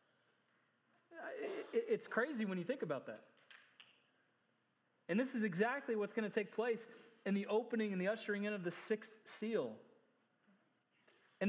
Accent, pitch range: American, 170-215 Hz